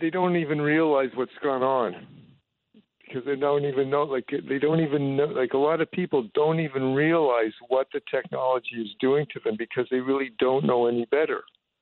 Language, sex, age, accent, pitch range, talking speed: English, male, 60-79, American, 125-150 Hz, 200 wpm